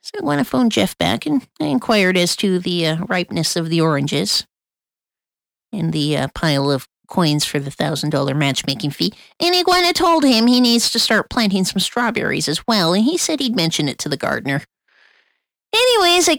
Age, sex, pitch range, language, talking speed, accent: 40-59, female, 145-240 Hz, English, 185 wpm, American